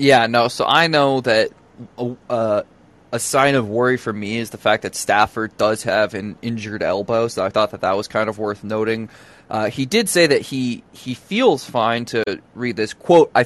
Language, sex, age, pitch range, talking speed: English, male, 20-39, 115-140 Hz, 215 wpm